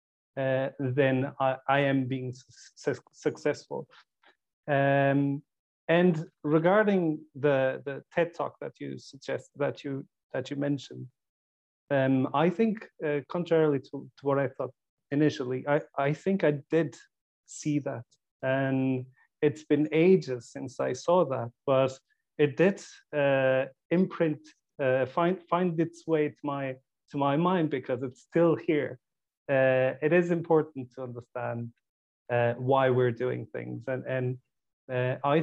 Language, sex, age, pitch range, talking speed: English, male, 40-59, 130-155 Hz, 140 wpm